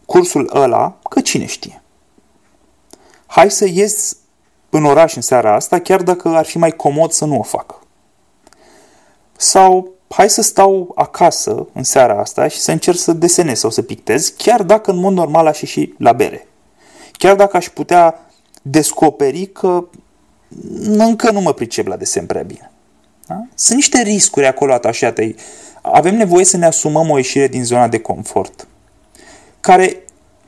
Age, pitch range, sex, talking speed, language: 30-49, 145-210 Hz, male, 160 wpm, Romanian